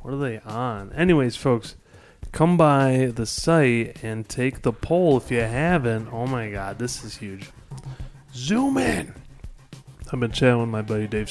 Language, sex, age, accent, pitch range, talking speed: English, male, 20-39, American, 115-145 Hz, 170 wpm